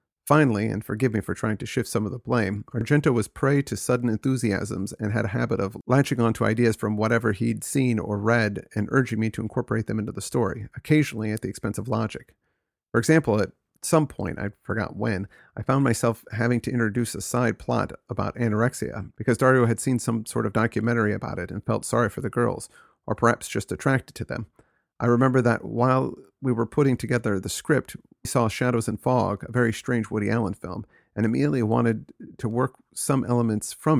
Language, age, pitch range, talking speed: Swedish, 40-59, 105-125 Hz, 205 wpm